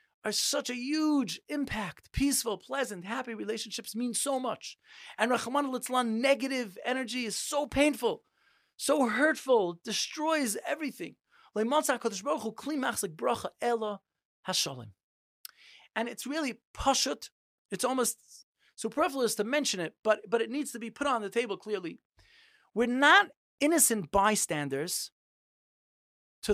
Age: 30-49